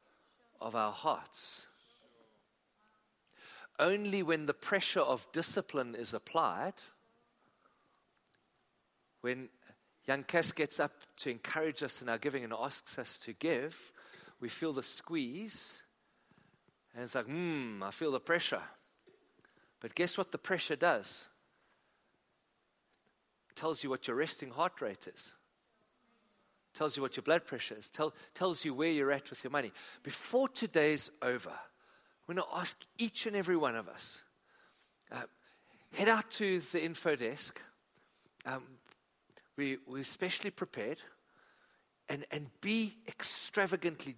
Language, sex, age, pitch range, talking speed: English, male, 50-69, 140-200 Hz, 130 wpm